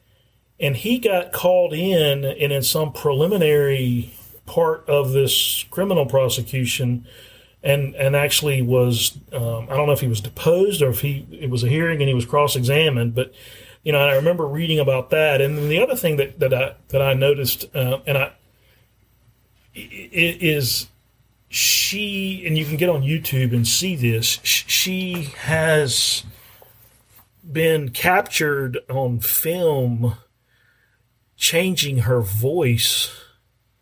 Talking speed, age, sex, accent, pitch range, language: 140 wpm, 40-59, male, American, 120-145 Hz, English